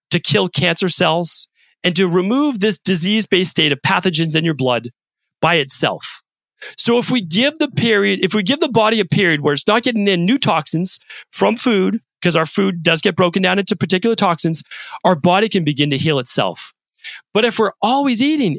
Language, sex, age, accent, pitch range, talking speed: English, male, 40-59, American, 150-205 Hz, 200 wpm